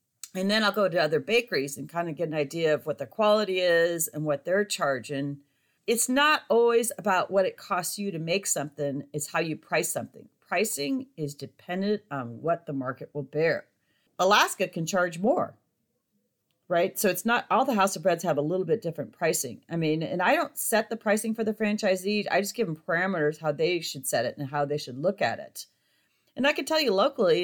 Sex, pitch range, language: female, 150-205 Hz, English